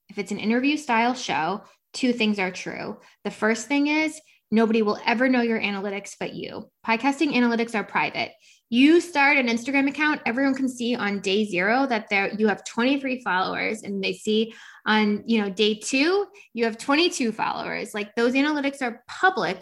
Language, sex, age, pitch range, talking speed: English, female, 10-29, 195-250 Hz, 180 wpm